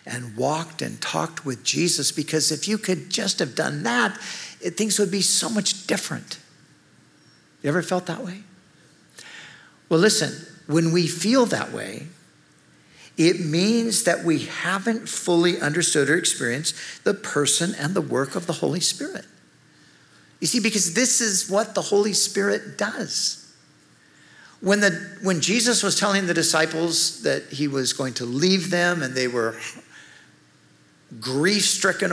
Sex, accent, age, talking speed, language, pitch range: male, American, 50-69, 145 wpm, English, 145-195 Hz